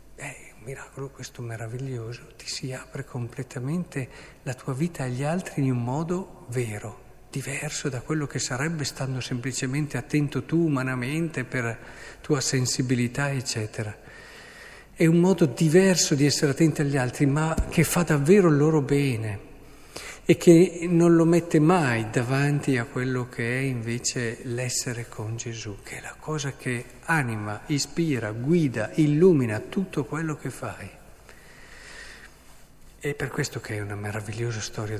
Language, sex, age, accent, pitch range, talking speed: Italian, male, 50-69, native, 115-150 Hz, 140 wpm